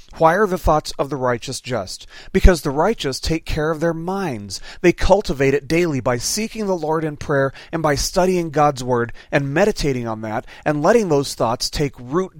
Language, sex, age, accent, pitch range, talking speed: English, male, 30-49, American, 130-180 Hz, 200 wpm